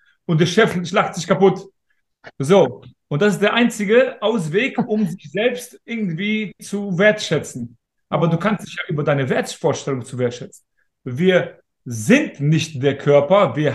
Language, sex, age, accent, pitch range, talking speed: German, male, 30-49, German, 150-205 Hz, 155 wpm